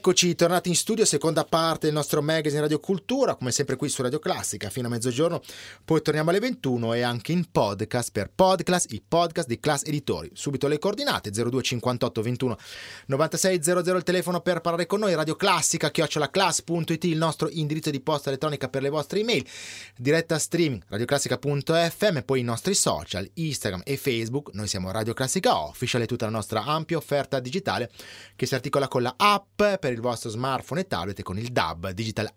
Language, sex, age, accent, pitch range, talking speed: Italian, male, 30-49, native, 120-170 Hz, 185 wpm